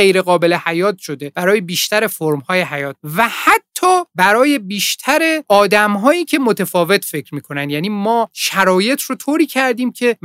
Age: 30-49